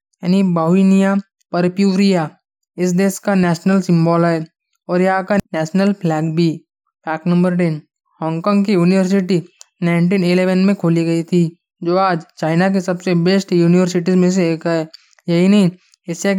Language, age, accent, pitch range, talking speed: Hindi, 20-39, native, 170-195 Hz, 145 wpm